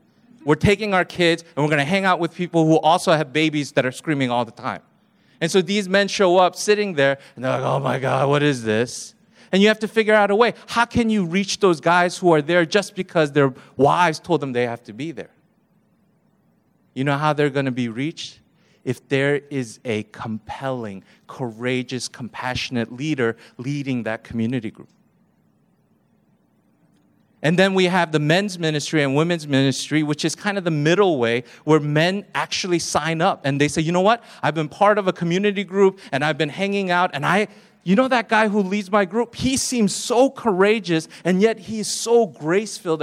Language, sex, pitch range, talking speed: English, male, 145-205 Hz, 205 wpm